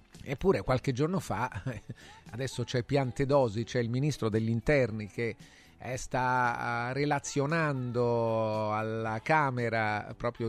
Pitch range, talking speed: 105-135 Hz, 105 wpm